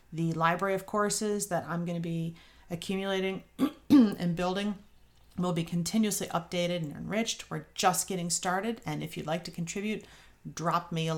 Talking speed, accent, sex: 165 wpm, American, female